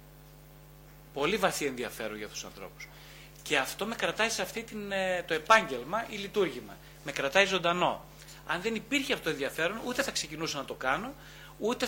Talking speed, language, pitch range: 170 wpm, Greek, 140-195 Hz